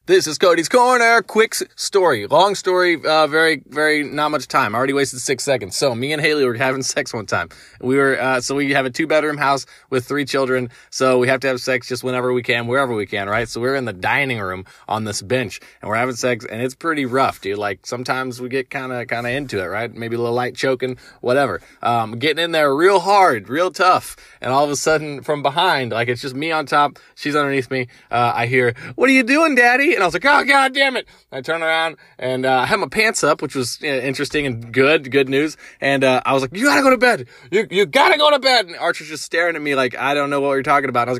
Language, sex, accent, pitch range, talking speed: English, male, American, 125-155 Hz, 265 wpm